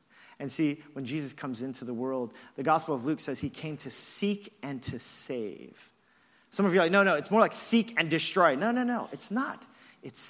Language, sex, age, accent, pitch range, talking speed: English, male, 40-59, American, 120-170 Hz, 225 wpm